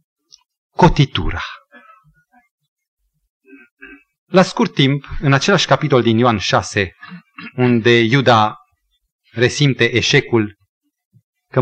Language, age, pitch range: Romanian, 30-49, 120-200 Hz